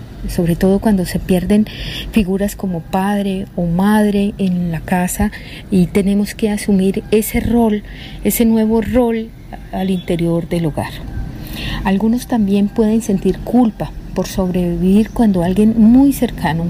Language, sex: Spanish, female